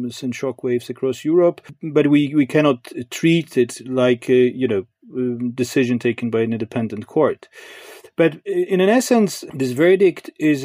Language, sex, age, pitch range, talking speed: English, male, 40-59, 120-145 Hz, 165 wpm